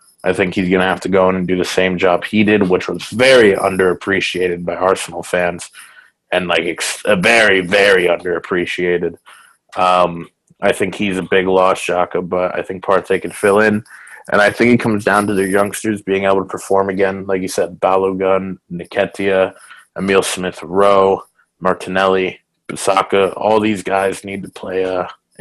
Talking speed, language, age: 175 wpm, English, 20-39